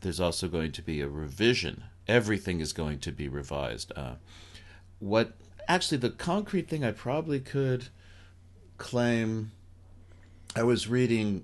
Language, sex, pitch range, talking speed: English, male, 80-100 Hz, 135 wpm